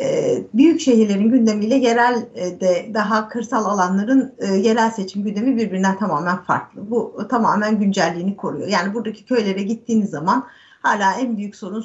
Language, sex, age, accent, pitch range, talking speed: Turkish, female, 50-69, native, 195-245 Hz, 135 wpm